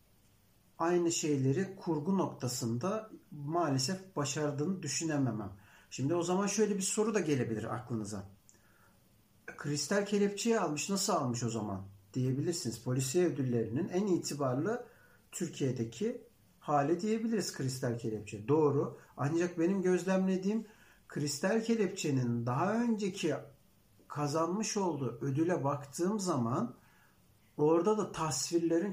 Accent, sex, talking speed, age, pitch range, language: native, male, 100 wpm, 60-79, 130-190 Hz, Turkish